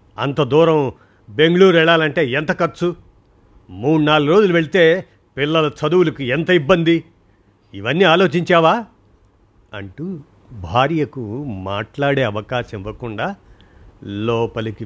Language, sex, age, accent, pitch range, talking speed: Telugu, male, 50-69, native, 105-150 Hz, 90 wpm